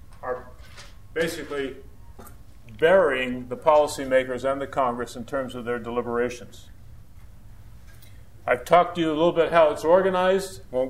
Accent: American